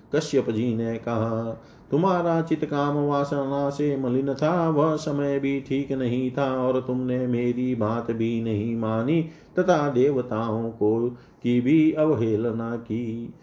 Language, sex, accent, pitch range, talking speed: Hindi, male, native, 115-145 Hz, 125 wpm